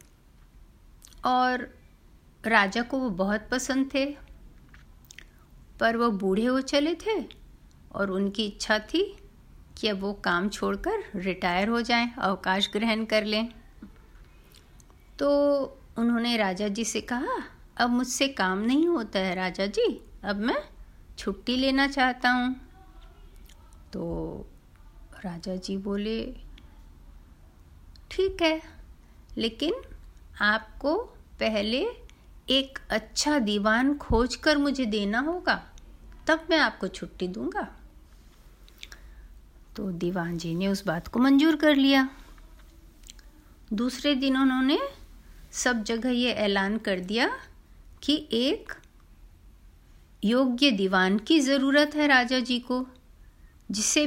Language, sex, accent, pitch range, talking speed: Hindi, female, native, 190-270 Hz, 110 wpm